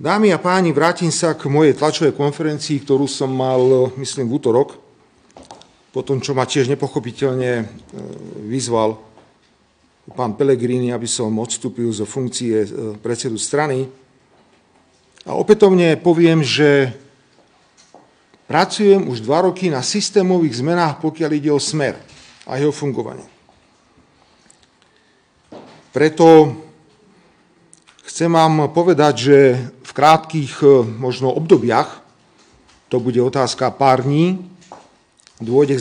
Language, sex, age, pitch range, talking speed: Slovak, male, 40-59, 125-155 Hz, 105 wpm